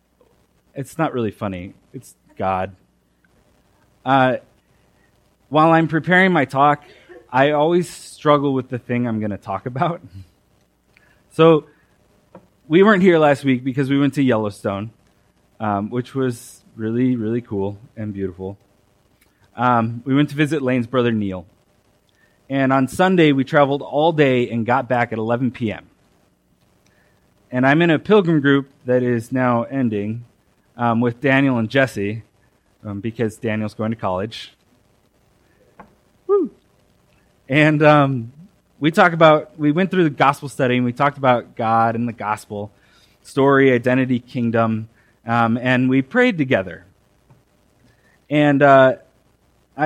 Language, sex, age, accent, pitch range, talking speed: English, male, 20-39, American, 105-140 Hz, 135 wpm